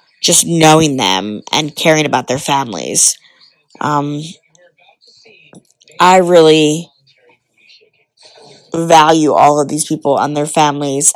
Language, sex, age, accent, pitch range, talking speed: English, female, 20-39, American, 145-180 Hz, 100 wpm